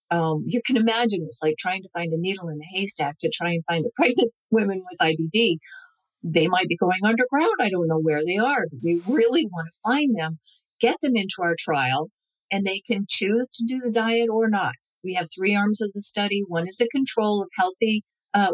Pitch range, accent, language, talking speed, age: 170-220 Hz, American, English, 225 wpm, 50-69